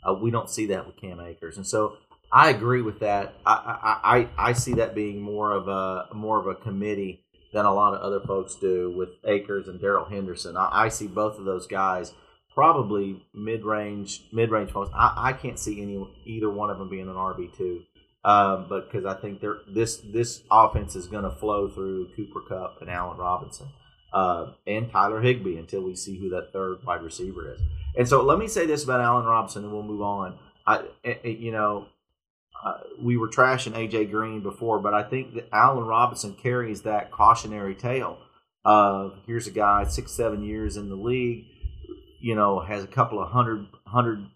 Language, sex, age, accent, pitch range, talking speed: English, male, 30-49, American, 100-115 Hz, 200 wpm